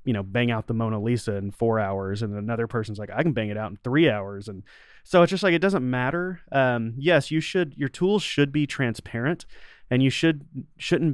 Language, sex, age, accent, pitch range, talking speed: English, male, 30-49, American, 110-135 Hz, 230 wpm